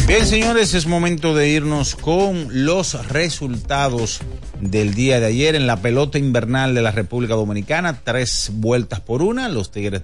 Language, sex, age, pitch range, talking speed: Spanish, male, 40-59, 100-130 Hz, 160 wpm